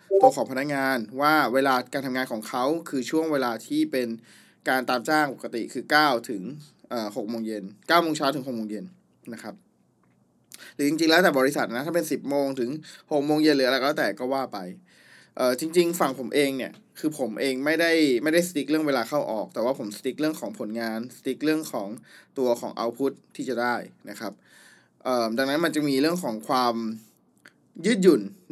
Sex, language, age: male, Thai, 20-39